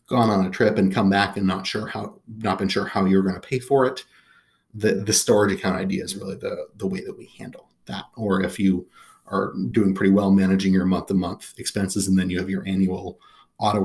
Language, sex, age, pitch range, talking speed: English, male, 30-49, 95-105 Hz, 240 wpm